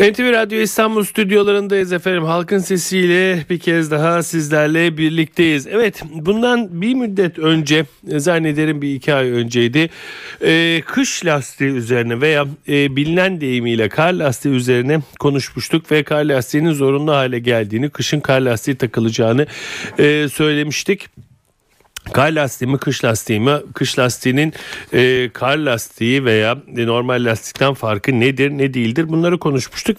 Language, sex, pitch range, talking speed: Turkish, male, 125-170 Hz, 130 wpm